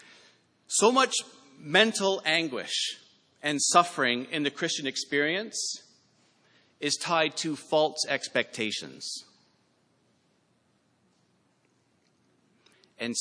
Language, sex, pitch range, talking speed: English, male, 135-185 Hz, 75 wpm